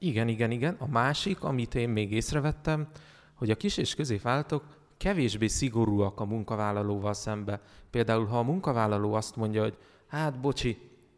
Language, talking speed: Hungarian, 150 wpm